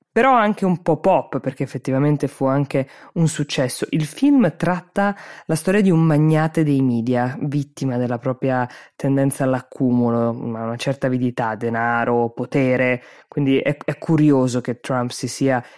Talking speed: 150 wpm